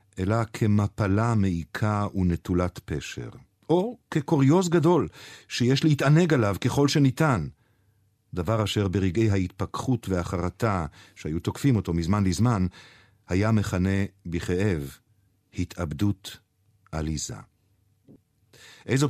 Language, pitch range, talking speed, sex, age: Hebrew, 95-125 Hz, 90 wpm, male, 50-69